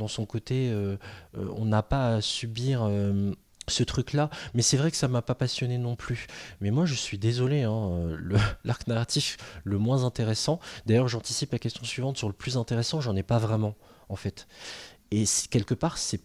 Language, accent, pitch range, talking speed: French, French, 110-140 Hz, 200 wpm